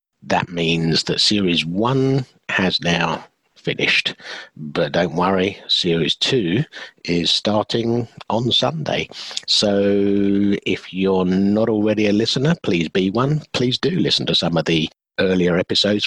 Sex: male